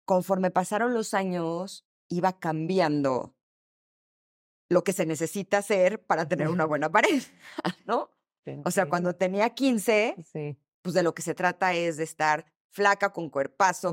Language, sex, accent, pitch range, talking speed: Spanish, female, Mexican, 145-185 Hz, 145 wpm